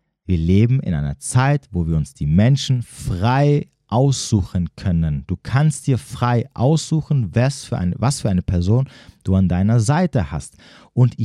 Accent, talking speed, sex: German, 155 wpm, male